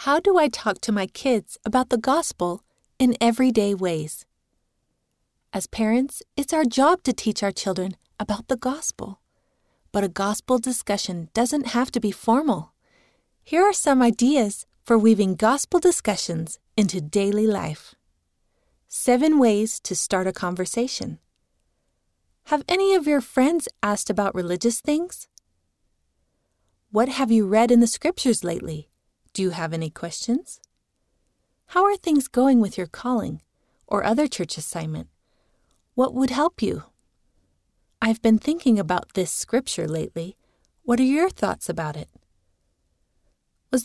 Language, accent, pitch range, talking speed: English, American, 185-260 Hz, 140 wpm